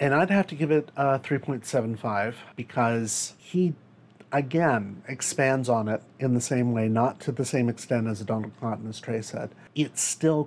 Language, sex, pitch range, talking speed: English, male, 120-145 Hz, 180 wpm